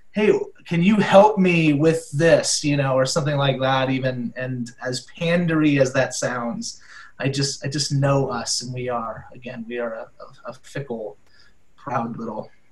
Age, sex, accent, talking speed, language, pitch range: 20-39, male, American, 175 wpm, English, 140-165 Hz